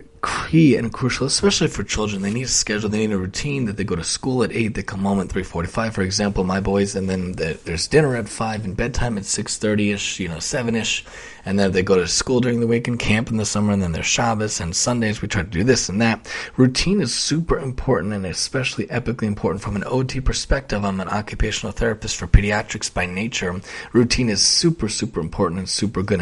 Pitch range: 100-115 Hz